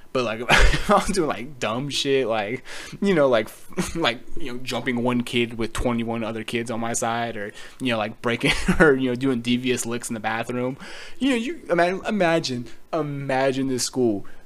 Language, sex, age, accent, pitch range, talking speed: English, male, 20-39, American, 110-135 Hz, 185 wpm